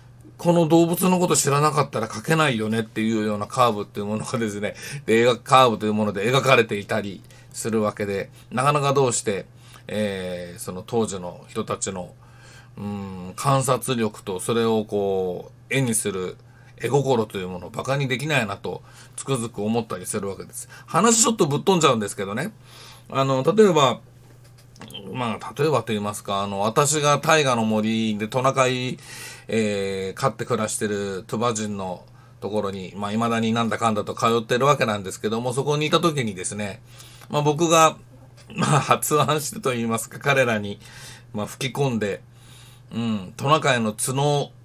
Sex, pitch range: male, 110-135 Hz